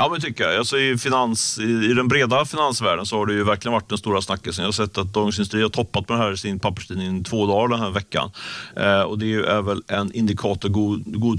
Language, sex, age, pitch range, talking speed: Swedish, male, 40-59, 105-120 Hz, 255 wpm